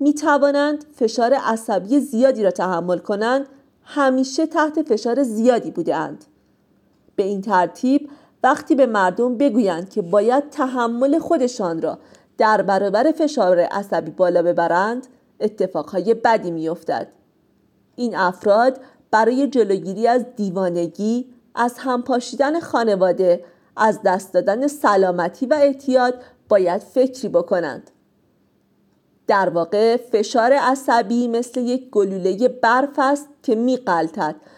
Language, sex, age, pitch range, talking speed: Persian, female, 40-59, 200-275 Hz, 110 wpm